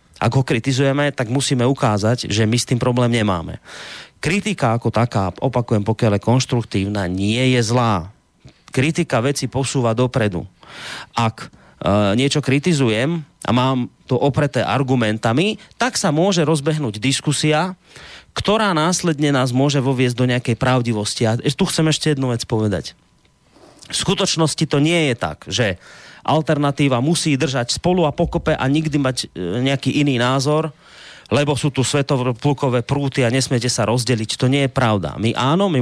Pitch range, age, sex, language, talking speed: 110-145 Hz, 30-49, male, Slovak, 150 wpm